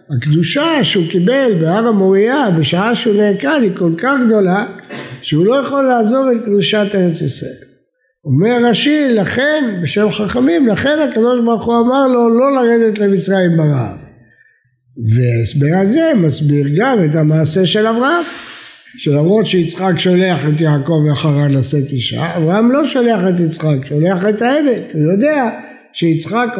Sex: male